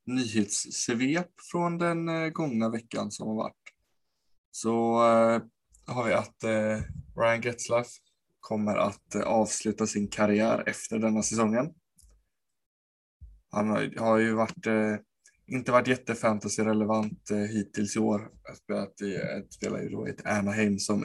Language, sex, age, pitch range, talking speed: Swedish, male, 20-39, 100-115 Hz, 130 wpm